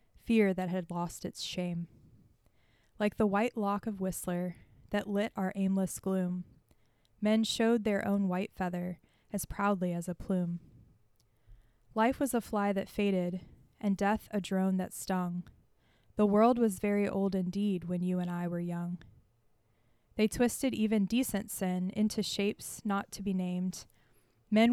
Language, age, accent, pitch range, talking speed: English, 20-39, American, 175-210 Hz, 155 wpm